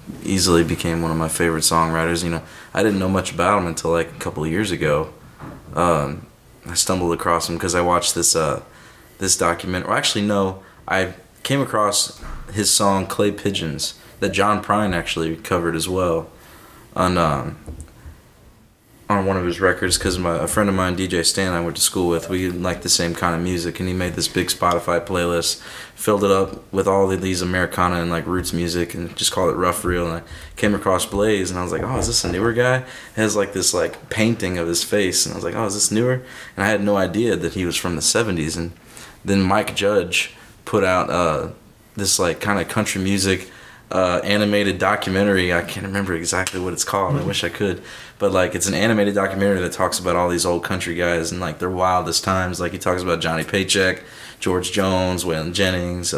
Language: English